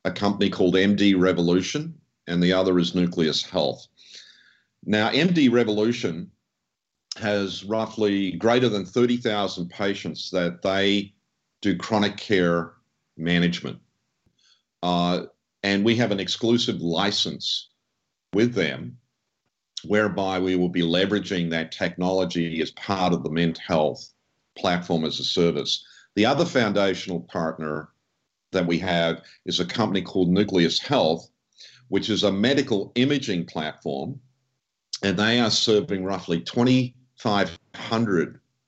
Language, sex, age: English, male, 50-69